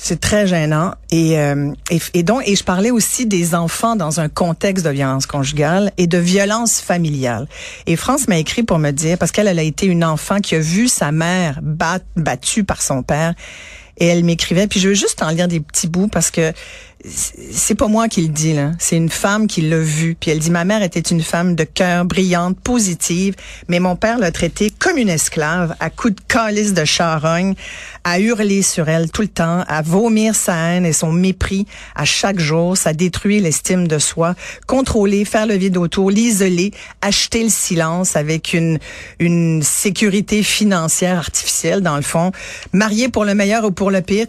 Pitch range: 165-200 Hz